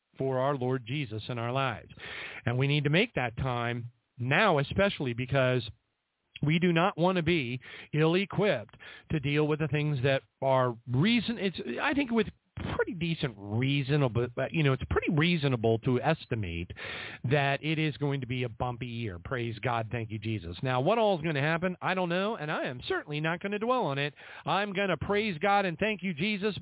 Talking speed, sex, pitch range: 200 wpm, male, 125-180 Hz